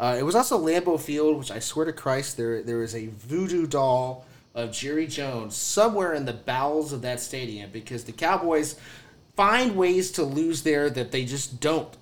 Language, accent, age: English, American, 30-49